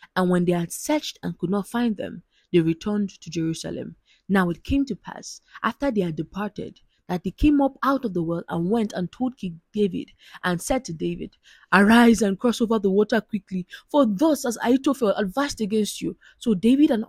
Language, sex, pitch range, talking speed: English, female, 175-230 Hz, 205 wpm